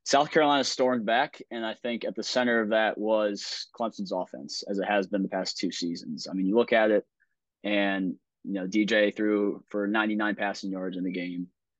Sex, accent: male, American